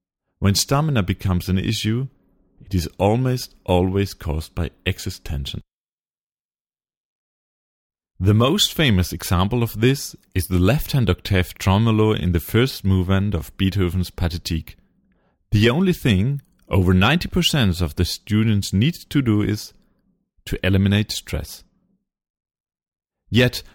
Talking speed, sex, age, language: 120 wpm, male, 40-59, English